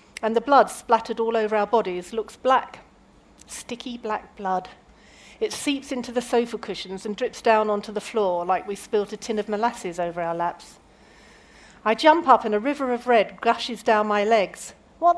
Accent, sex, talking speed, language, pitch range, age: British, female, 190 wpm, English, 205-275 Hz, 40-59